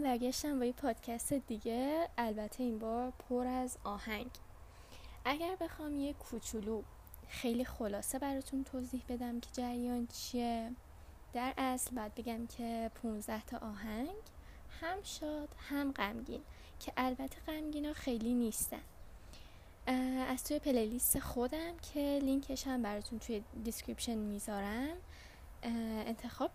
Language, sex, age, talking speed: Persian, female, 10-29, 120 wpm